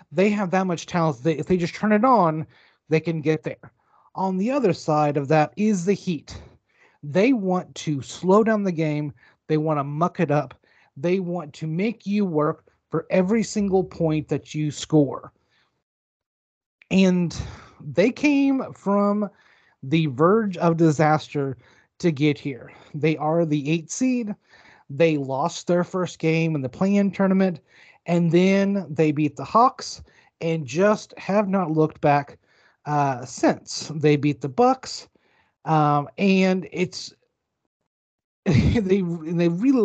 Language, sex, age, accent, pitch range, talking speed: English, male, 30-49, American, 150-190 Hz, 150 wpm